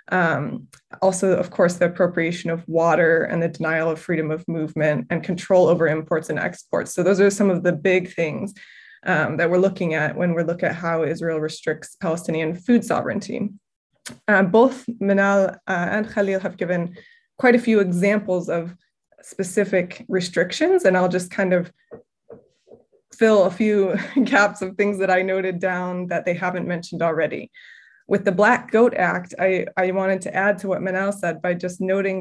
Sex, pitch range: female, 175-200 Hz